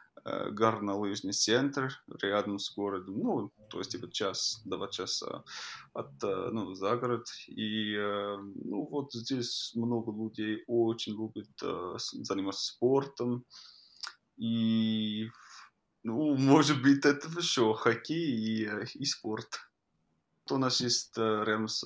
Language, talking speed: Russian, 120 wpm